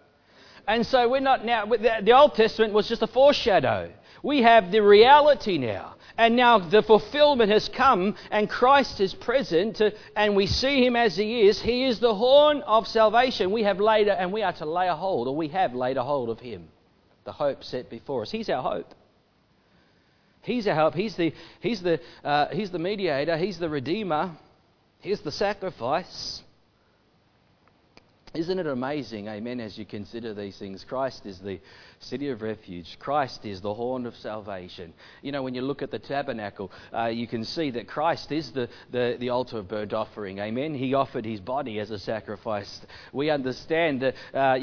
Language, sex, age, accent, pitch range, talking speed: English, male, 40-59, Australian, 125-210 Hz, 180 wpm